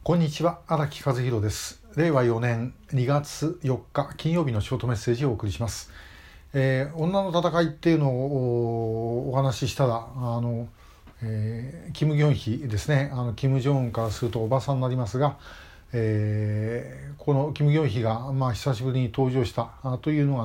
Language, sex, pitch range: Japanese, male, 120-145 Hz